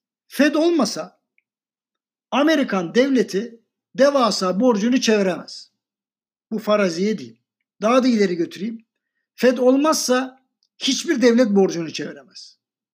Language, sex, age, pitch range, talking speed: Turkish, male, 60-79, 190-245 Hz, 95 wpm